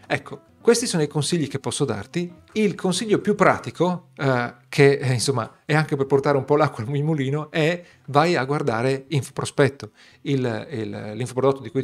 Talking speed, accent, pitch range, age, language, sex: 170 wpm, native, 120-150 Hz, 40-59, Italian, male